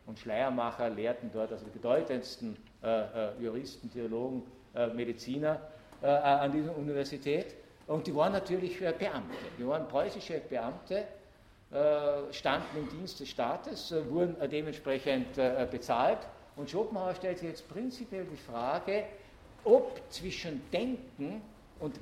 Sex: male